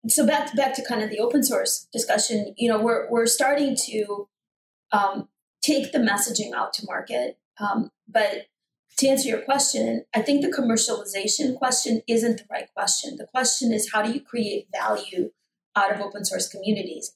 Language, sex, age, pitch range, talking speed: English, female, 20-39, 185-235 Hz, 180 wpm